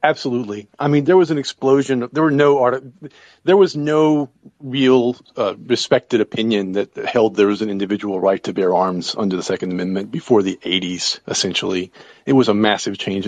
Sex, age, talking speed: male, 40-59, 185 wpm